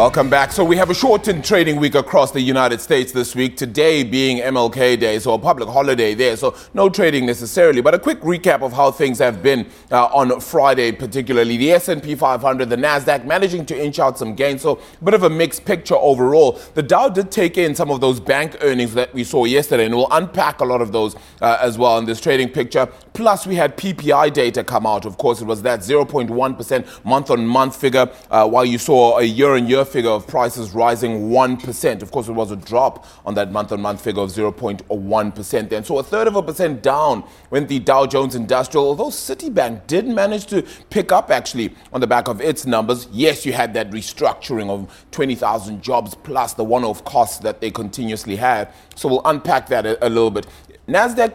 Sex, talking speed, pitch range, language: male, 215 wpm, 120-165 Hz, English